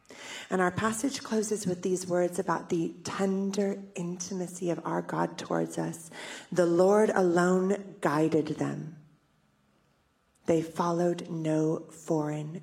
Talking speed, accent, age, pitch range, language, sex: 120 wpm, American, 30-49, 160-190 Hz, English, female